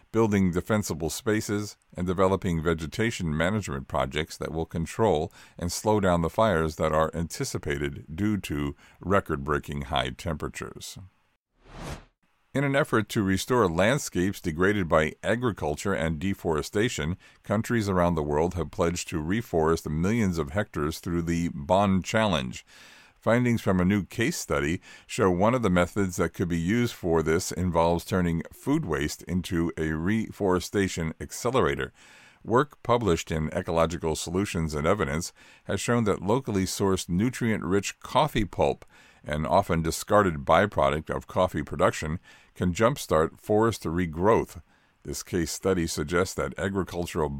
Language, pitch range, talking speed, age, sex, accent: English, 80-105 Hz, 135 wpm, 50-69, male, American